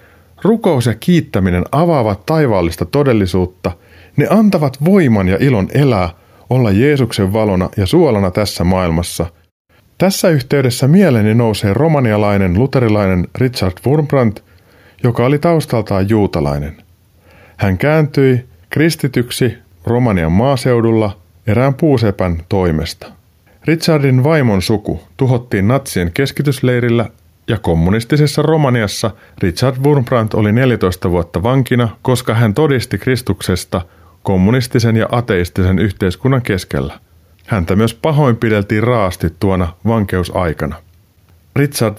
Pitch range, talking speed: 95-130 Hz, 100 wpm